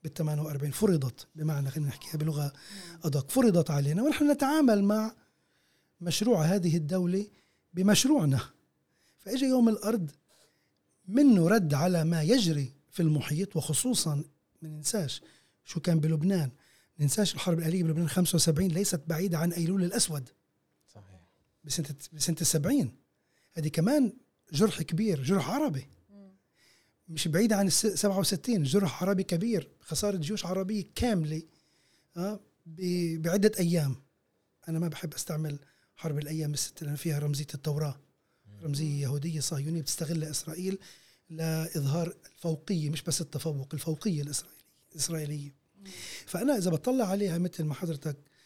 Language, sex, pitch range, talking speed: Arabic, male, 150-190 Hz, 125 wpm